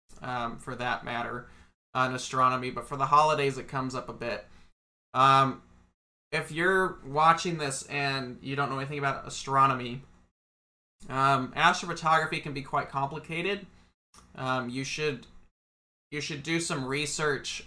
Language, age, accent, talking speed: English, 20-39, American, 145 wpm